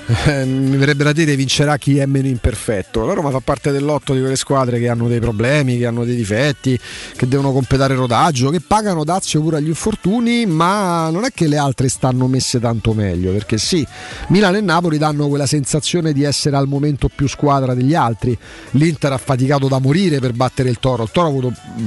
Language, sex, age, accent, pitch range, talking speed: Italian, male, 40-59, native, 120-155 Hz, 210 wpm